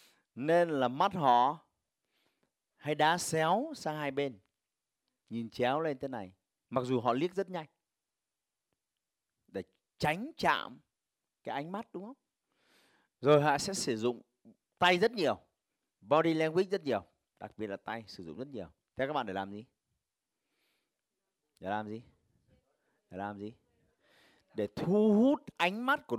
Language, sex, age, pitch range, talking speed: Vietnamese, male, 30-49, 115-175 Hz, 150 wpm